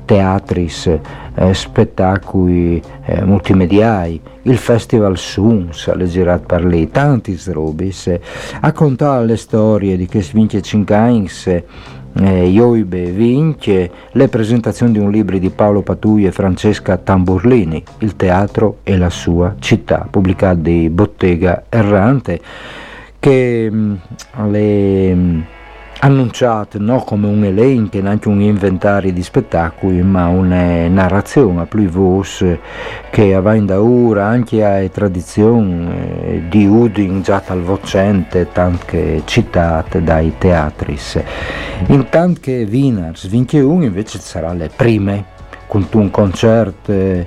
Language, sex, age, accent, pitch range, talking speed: Italian, male, 50-69, native, 90-110 Hz, 120 wpm